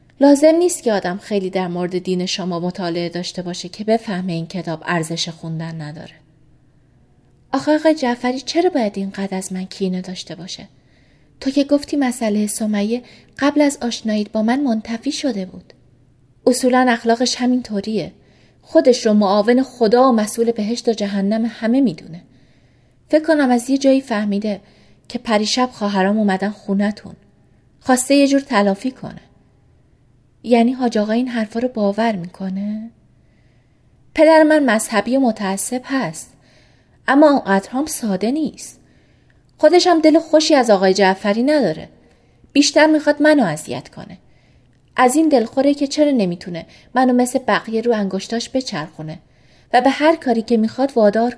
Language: Persian